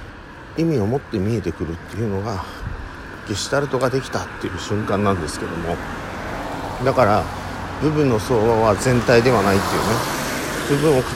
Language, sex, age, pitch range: Japanese, male, 50-69, 90-130 Hz